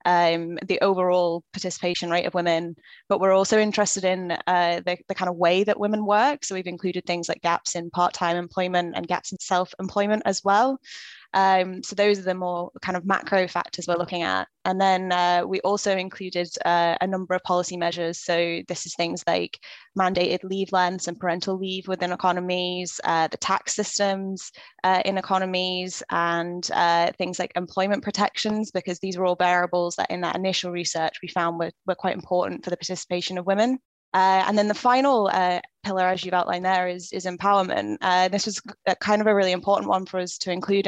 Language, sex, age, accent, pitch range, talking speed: English, female, 10-29, British, 180-195 Hz, 200 wpm